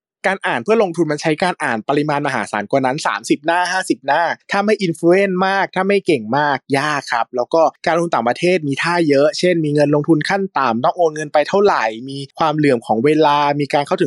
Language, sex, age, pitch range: Thai, male, 20-39, 135-185 Hz